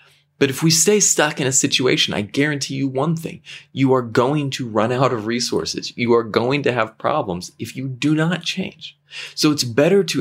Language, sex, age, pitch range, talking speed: English, male, 30-49, 120-155 Hz, 210 wpm